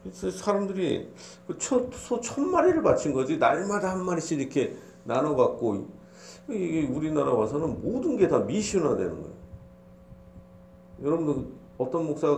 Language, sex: Korean, male